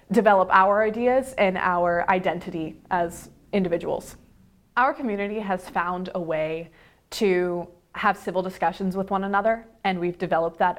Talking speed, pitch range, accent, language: 140 wpm, 180-215 Hz, American, English